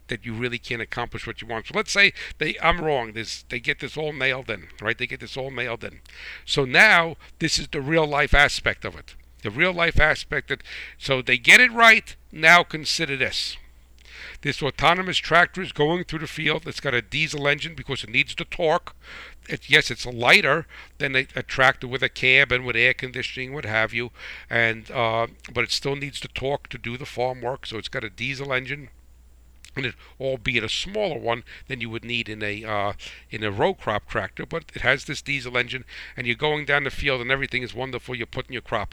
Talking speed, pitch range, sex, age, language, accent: 215 wpm, 110-140 Hz, male, 60-79, English, American